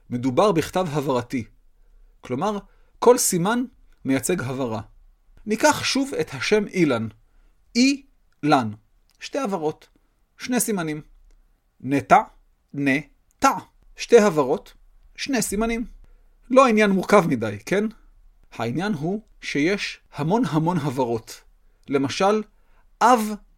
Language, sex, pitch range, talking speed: Hebrew, male, 140-215 Hz, 95 wpm